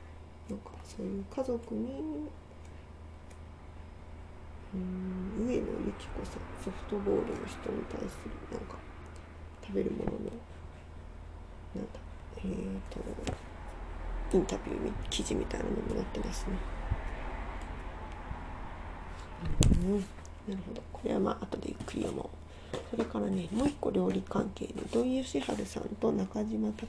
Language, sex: Japanese, female